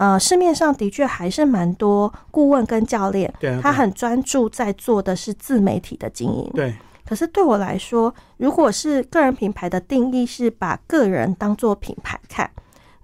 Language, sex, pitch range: Chinese, female, 190-255 Hz